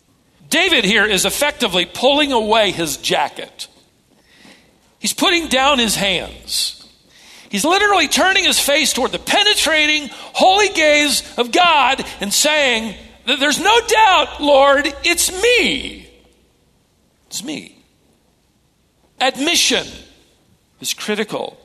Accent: American